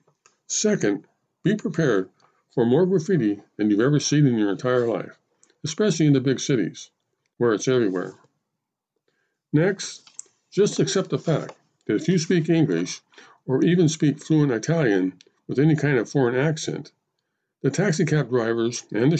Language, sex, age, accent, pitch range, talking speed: English, male, 50-69, American, 120-160 Hz, 150 wpm